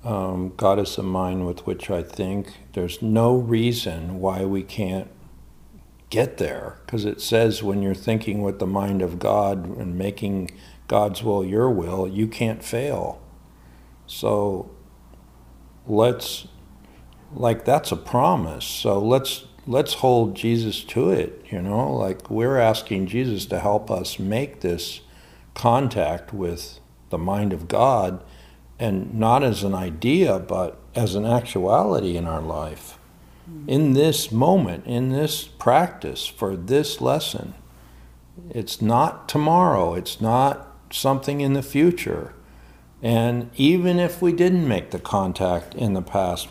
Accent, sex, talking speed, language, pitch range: American, male, 140 wpm, English, 90-120 Hz